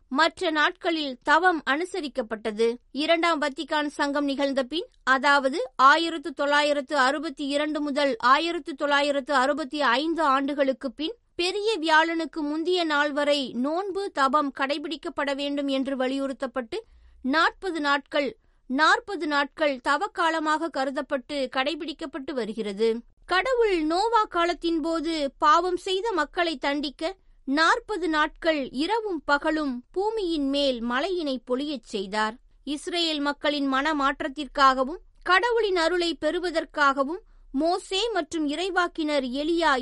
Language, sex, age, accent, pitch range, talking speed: Tamil, female, 20-39, native, 280-335 Hz, 100 wpm